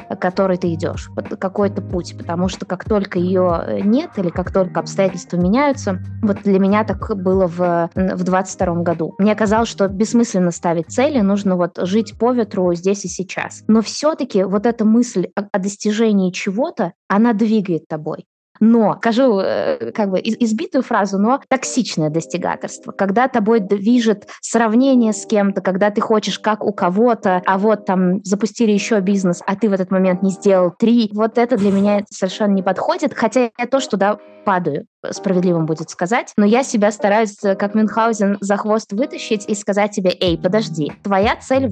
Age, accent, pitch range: 20-39, native, 185-230 Hz